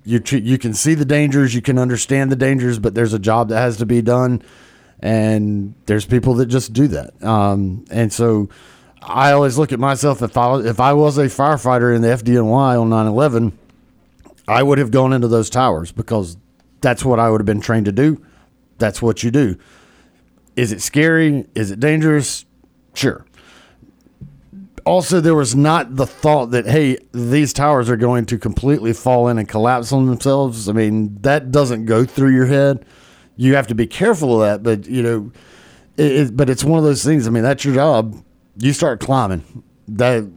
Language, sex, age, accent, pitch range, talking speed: English, male, 40-59, American, 110-135 Hz, 195 wpm